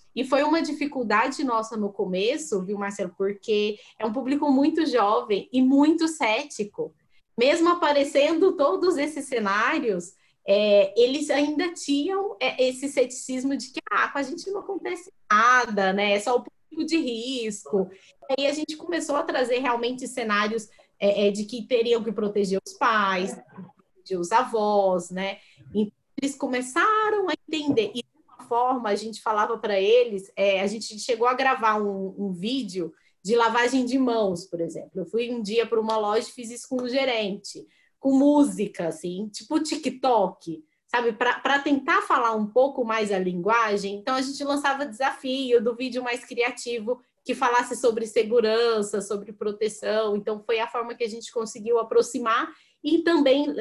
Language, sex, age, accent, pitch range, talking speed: Portuguese, female, 20-39, Brazilian, 210-275 Hz, 165 wpm